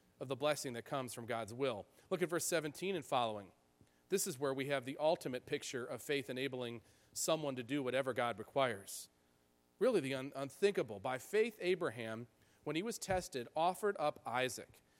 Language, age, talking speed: English, 40-59, 175 wpm